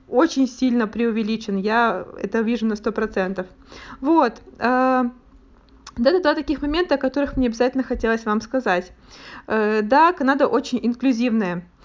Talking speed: 125 wpm